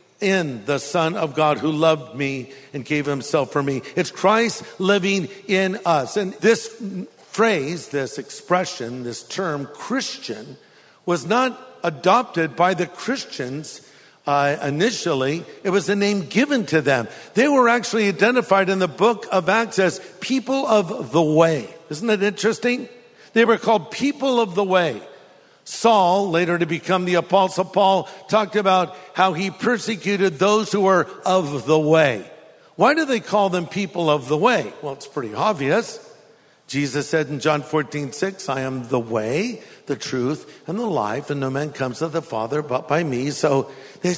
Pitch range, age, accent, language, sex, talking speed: 155-220 Hz, 50-69, American, English, male, 170 wpm